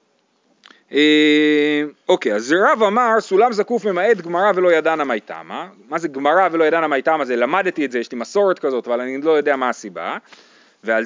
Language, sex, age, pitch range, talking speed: Hebrew, male, 30-49, 160-235 Hz, 200 wpm